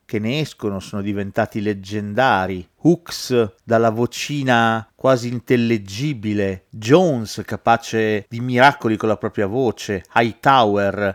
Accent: native